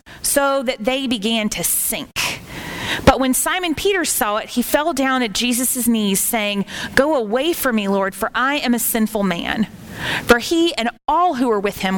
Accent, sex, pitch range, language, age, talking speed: American, female, 210-270 Hz, English, 30-49, 190 wpm